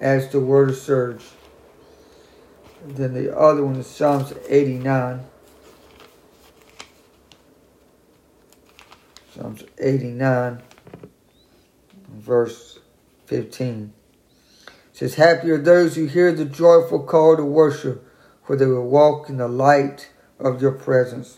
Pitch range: 135-165 Hz